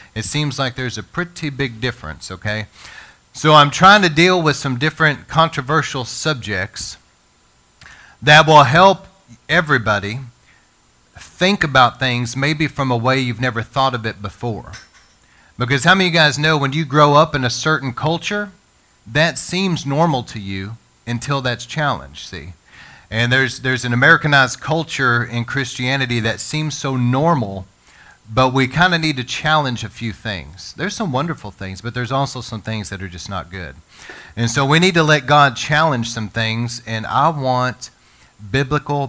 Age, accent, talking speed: 40-59, American, 165 wpm